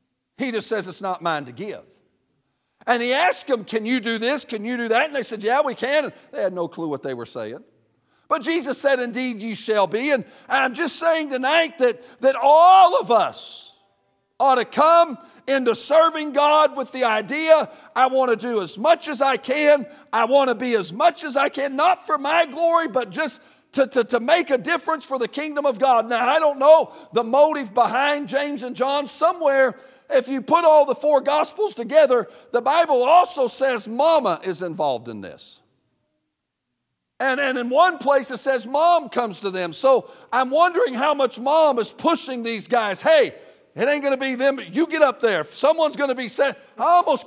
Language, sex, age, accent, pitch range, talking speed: English, male, 50-69, American, 230-295 Hz, 205 wpm